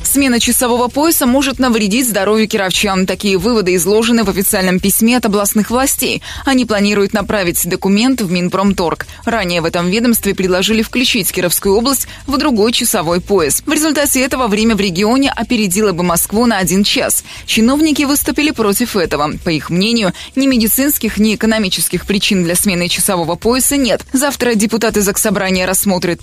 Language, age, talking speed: Russian, 20-39, 155 wpm